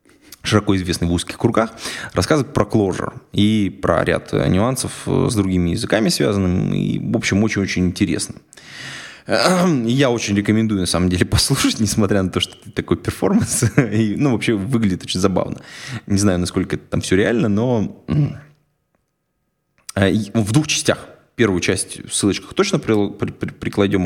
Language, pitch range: Russian, 95-120 Hz